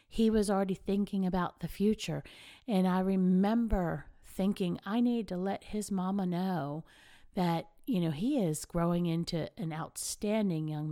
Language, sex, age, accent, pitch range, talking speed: English, female, 50-69, American, 170-215 Hz, 155 wpm